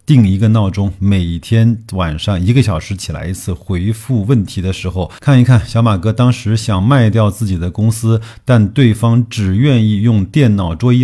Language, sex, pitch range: Chinese, male, 95-120 Hz